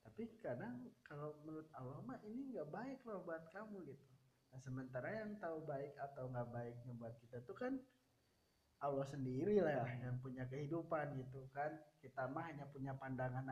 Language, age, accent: Indonesian, 20-39, native